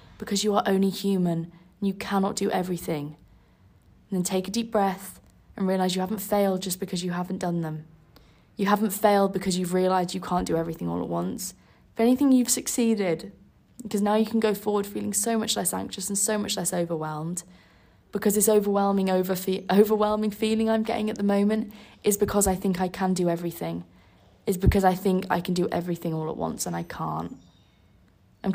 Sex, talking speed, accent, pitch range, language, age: female, 200 wpm, British, 165-200 Hz, English, 20-39